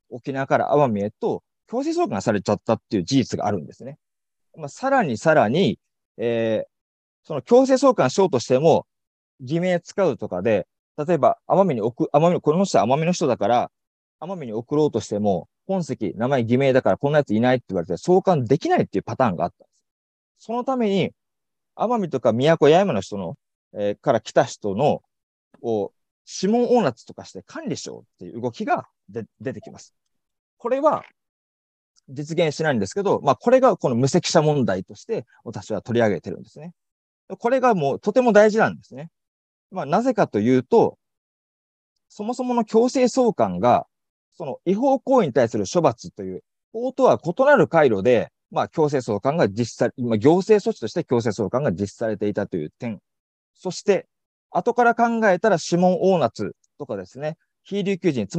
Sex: male